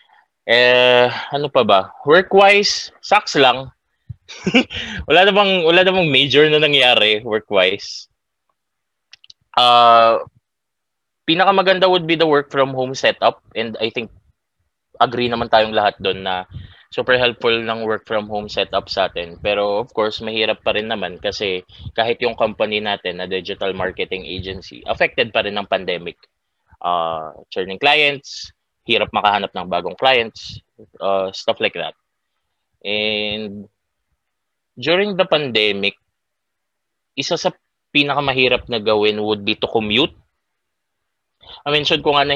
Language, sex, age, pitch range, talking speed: Filipino, male, 20-39, 105-140 Hz, 135 wpm